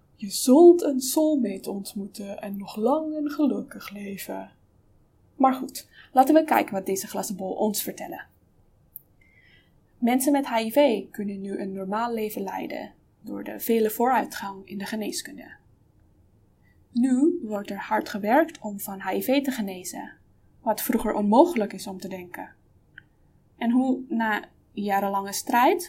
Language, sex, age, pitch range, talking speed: Dutch, female, 10-29, 205-275 Hz, 140 wpm